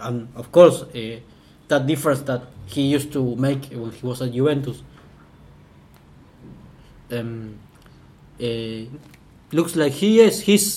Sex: male